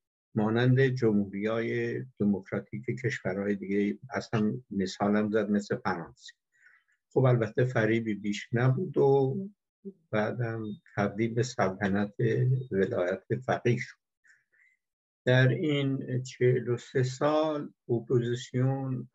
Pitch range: 110-130 Hz